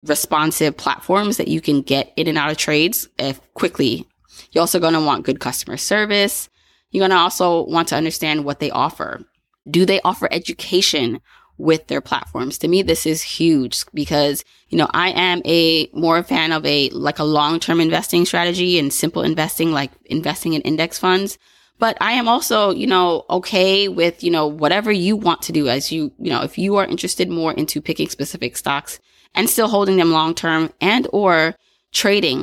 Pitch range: 150-185 Hz